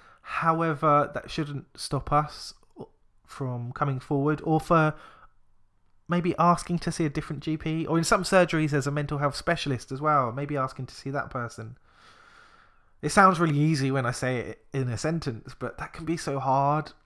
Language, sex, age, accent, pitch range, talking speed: English, male, 20-39, British, 125-150 Hz, 180 wpm